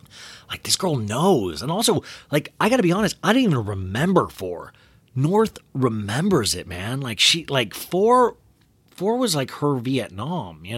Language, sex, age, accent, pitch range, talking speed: English, male, 30-49, American, 100-145 Hz, 165 wpm